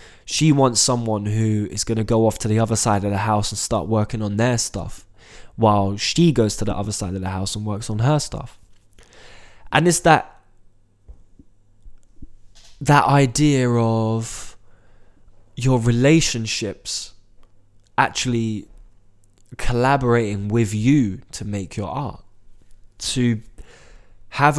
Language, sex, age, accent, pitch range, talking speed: English, male, 20-39, British, 100-120 Hz, 135 wpm